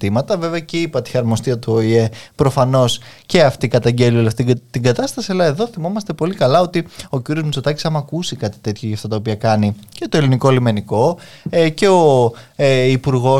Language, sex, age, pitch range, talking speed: Greek, male, 20-39, 115-155 Hz, 170 wpm